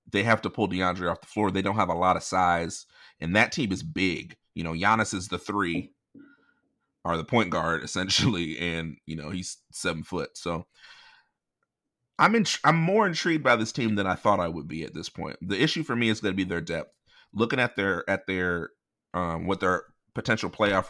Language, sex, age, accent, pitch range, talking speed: English, male, 30-49, American, 85-105 Hz, 215 wpm